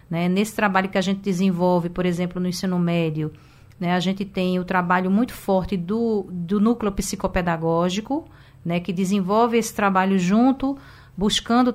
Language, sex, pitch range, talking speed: Portuguese, female, 180-220 Hz, 155 wpm